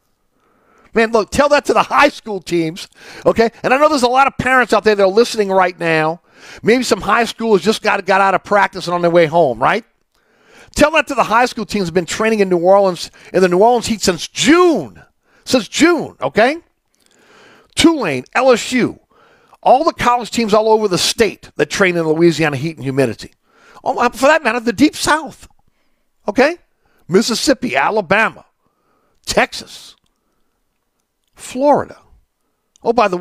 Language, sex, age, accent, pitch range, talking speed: English, male, 50-69, American, 175-260 Hz, 175 wpm